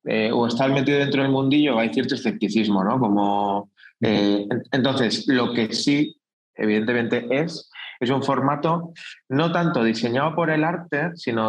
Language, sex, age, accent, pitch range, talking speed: Spanish, male, 20-39, Spanish, 110-145 Hz, 150 wpm